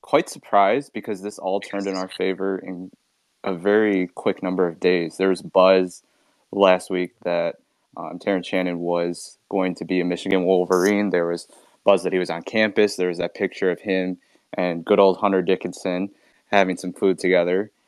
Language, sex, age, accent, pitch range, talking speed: English, male, 20-39, American, 90-100 Hz, 185 wpm